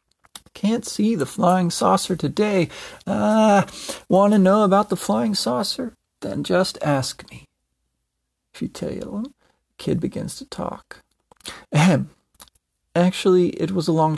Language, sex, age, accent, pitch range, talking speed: English, male, 40-59, American, 150-200 Hz, 135 wpm